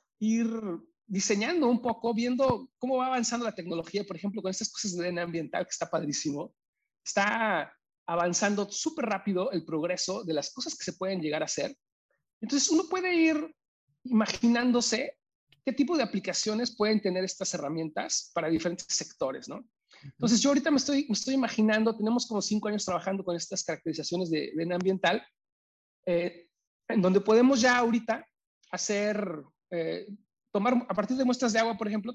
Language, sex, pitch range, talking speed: Spanish, male, 175-235 Hz, 165 wpm